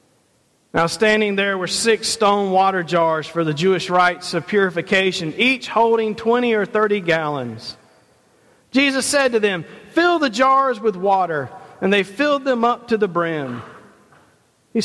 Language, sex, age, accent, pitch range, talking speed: English, male, 40-59, American, 170-225 Hz, 155 wpm